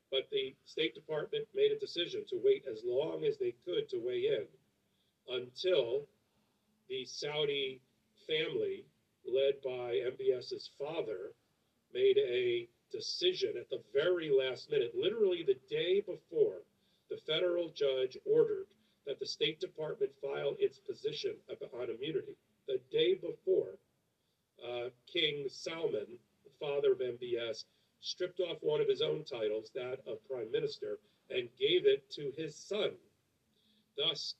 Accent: American